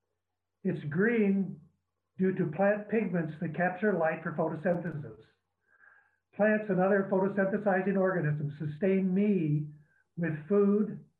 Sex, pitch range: male, 155-200 Hz